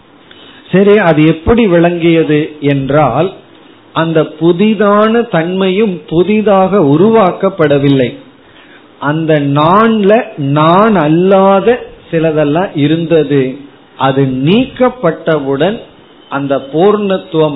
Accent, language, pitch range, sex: native, Tamil, 140-195 Hz, male